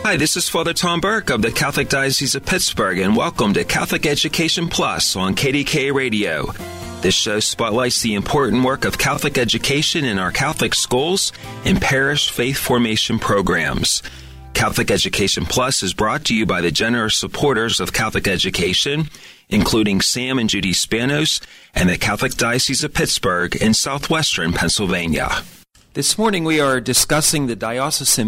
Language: English